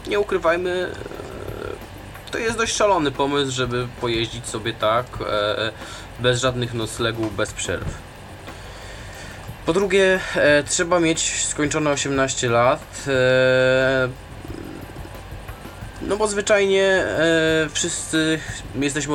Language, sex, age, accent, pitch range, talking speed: Polish, male, 20-39, native, 110-145 Hz, 90 wpm